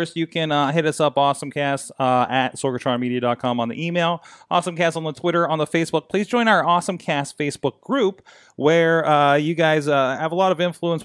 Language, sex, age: English, male, 30-49